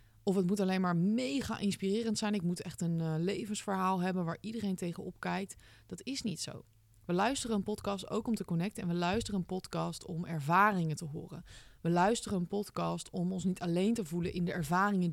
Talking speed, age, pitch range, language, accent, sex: 210 wpm, 20-39, 165-220 Hz, Dutch, Dutch, female